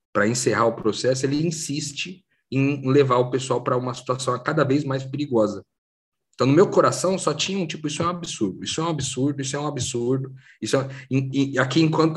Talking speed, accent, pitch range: 210 wpm, Brazilian, 115-150 Hz